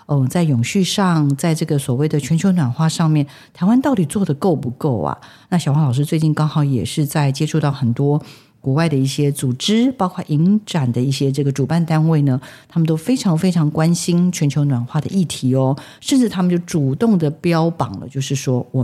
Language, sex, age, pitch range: Chinese, female, 50-69, 135-170 Hz